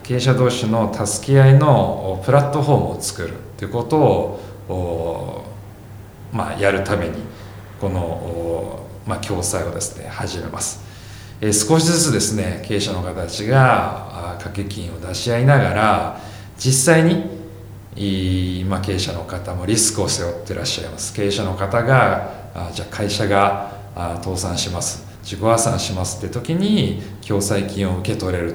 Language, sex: Japanese, male